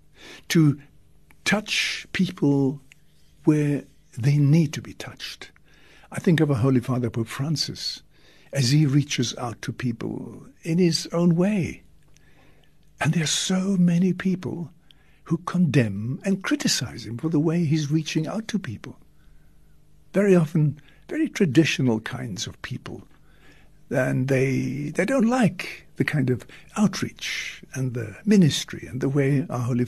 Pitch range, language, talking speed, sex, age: 130-185 Hz, English, 140 wpm, male, 60-79